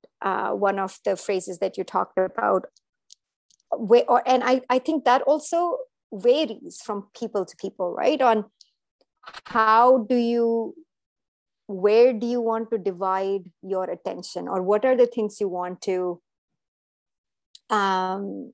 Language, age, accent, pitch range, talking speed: English, 50-69, Indian, 195-255 Hz, 140 wpm